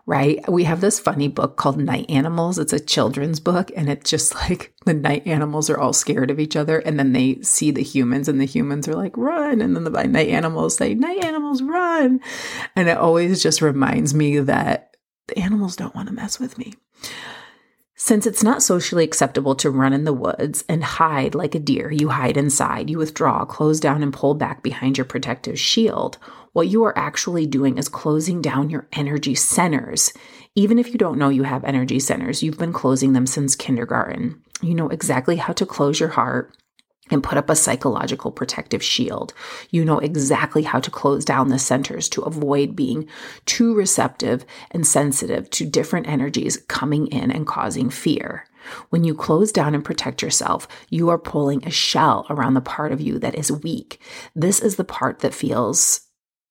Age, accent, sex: 30-49, American, female